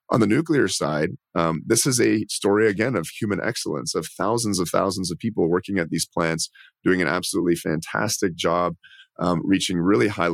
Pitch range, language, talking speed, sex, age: 85-100 Hz, English, 185 wpm, male, 30-49